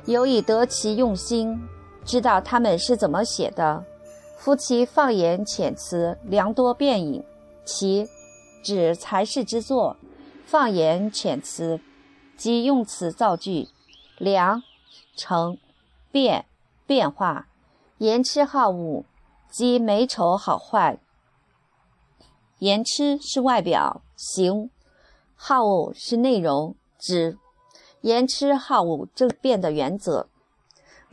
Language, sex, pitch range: Chinese, female, 180-255 Hz